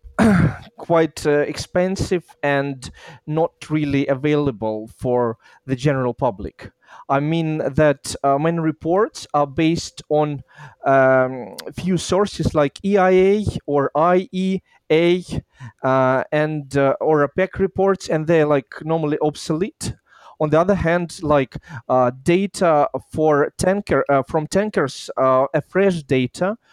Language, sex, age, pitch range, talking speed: English, male, 30-49, 140-175 Hz, 125 wpm